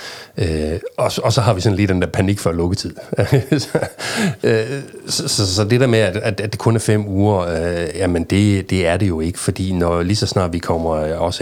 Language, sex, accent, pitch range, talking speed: Danish, male, native, 80-95 Hz, 225 wpm